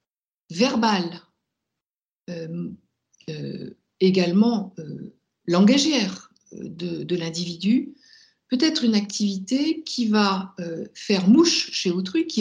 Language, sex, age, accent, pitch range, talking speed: French, female, 60-79, French, 195-255 Hz, 100 wpm